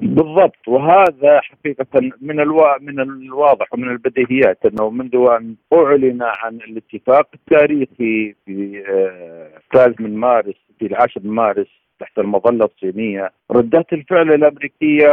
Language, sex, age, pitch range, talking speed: Arabic, male, 50-69, 115-150 Hz, 115 wpm